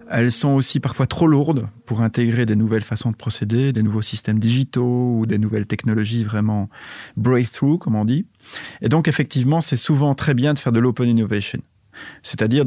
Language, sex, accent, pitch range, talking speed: Dutch, male, French, 110-135 Hz, 185 wpm